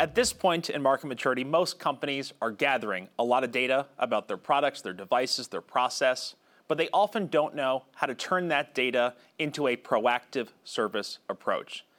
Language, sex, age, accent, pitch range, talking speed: English, male, 30-49, American, 130-170 Hz, 180 wpm